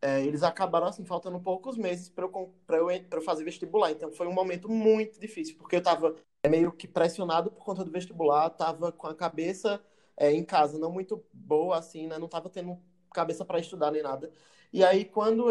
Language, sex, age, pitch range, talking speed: Portuguese, male, 20-39, 160-195 Hz, 210 wpm